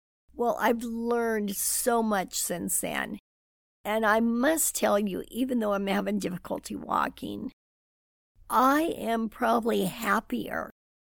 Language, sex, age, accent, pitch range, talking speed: English, female, 60-79, American, 195-230 Hz, 120 wpm